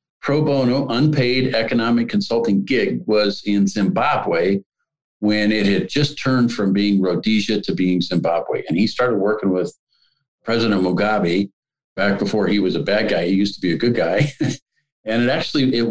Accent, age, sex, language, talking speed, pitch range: American, 50-69, male, English, 170 wpm, 95-125 Hz